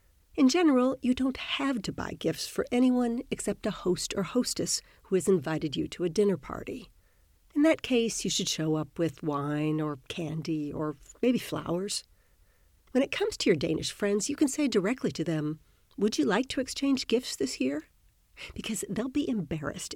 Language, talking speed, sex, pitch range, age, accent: Danish, 185 wpm, female, 165-255 Hz, 50-69, American